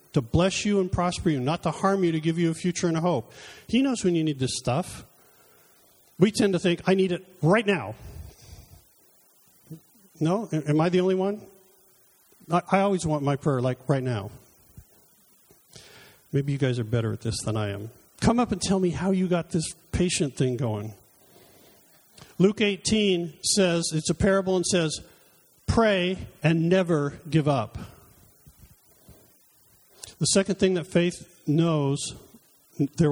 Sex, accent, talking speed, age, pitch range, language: male, American, 165 wpm, 50-69, 150-195 Hz, English